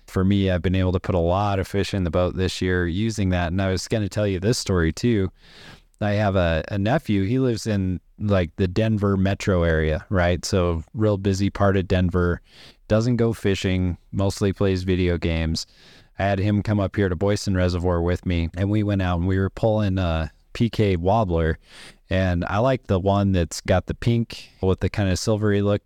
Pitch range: 90-110 Hz